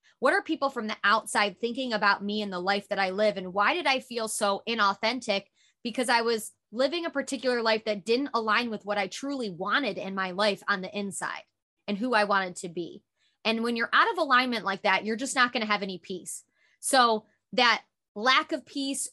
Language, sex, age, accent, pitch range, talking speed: English, female, 20-39, American, 205-260 Hz, 215 wpm